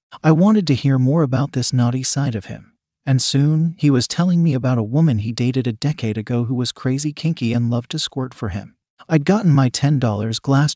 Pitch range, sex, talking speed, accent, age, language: 125-150 Hz, male, 225 wpm, American, 40-59, English